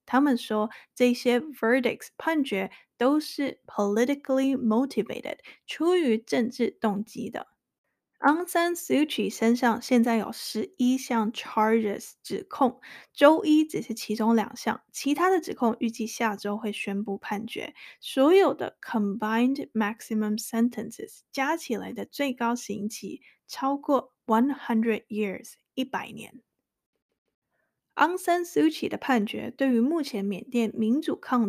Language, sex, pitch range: Chinese, female, 220-280 Hz